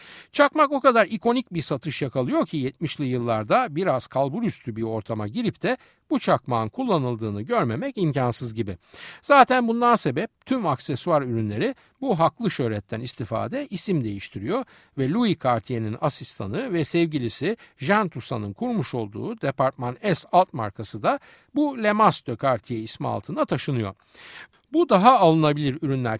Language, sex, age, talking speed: Turkish, male, 60-79, 140 wpm